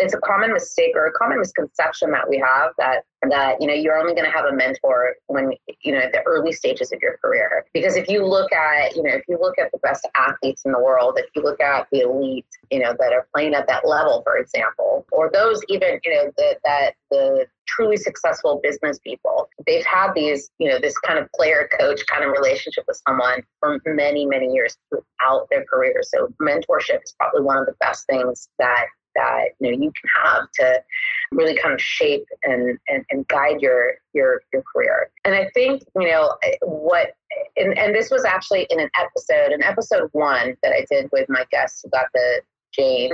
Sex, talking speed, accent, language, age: female, 215 wpm, American, English, 30-49